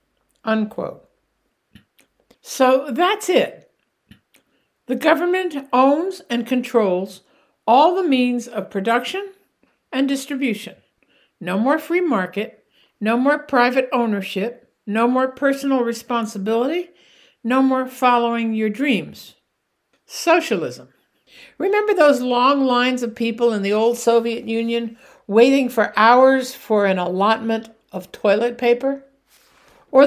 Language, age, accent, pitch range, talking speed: English, 60-79, American, 225-280 Hz, 110 wpm